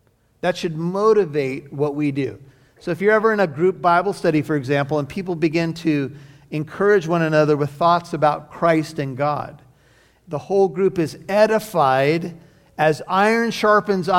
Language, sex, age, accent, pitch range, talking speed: English, male, 50-69, American, 150-180 Hz, 160 wpm